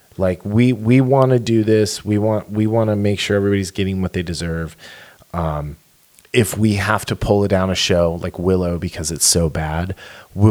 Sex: male